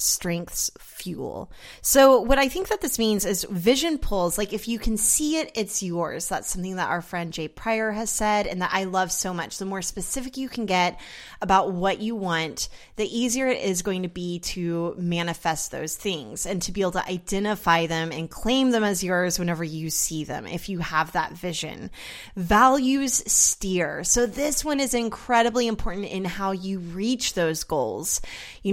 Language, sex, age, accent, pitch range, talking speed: English, female, 20-39, American, 180-230 Hz, 190 wpm